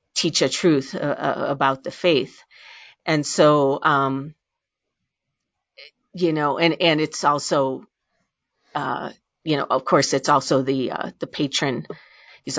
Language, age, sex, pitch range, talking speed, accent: English, 40-59, female, 145-165 Hz, 135 wpm, American